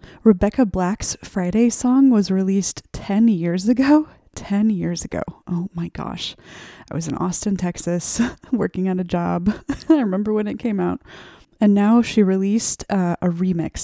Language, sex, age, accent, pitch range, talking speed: English, female, 20-39, American, 180-215 Hz, 160 wpm